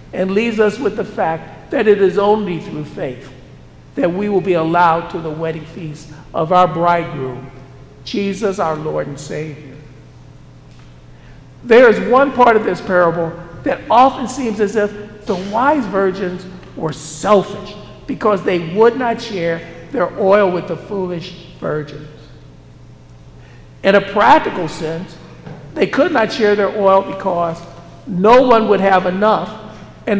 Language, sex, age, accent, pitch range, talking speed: English, male, 50-69, American, 155-210 Hz, 145 wpm